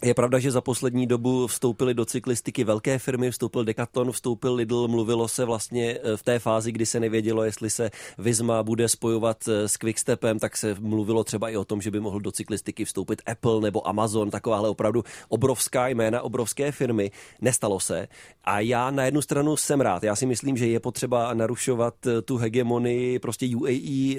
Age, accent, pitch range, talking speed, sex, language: 30-49, native, 110-130 Hz, 180 wpm, male, Czech